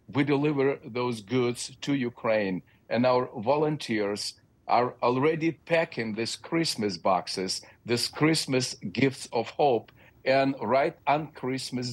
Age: 50-69